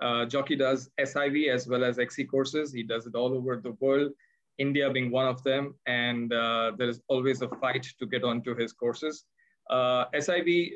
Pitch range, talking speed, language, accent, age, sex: 120-145 Hz, 195 wpm, English, Indian, 20-39, male